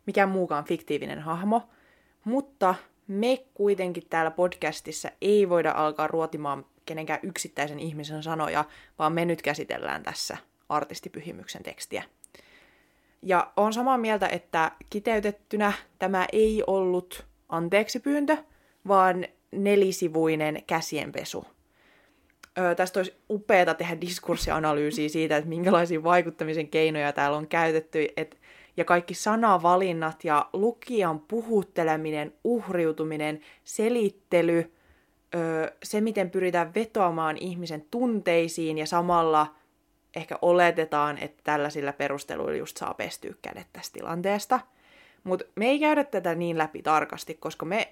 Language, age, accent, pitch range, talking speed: Finnish, 20-39, native, 155-200 Hz, 115 wpm